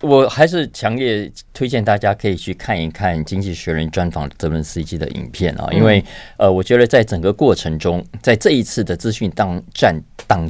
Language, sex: Chinese, male